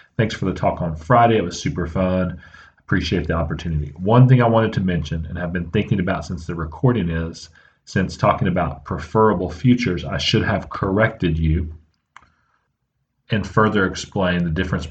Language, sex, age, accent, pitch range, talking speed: English, male, 40-59, American, 85-95 Hz, 175 wpm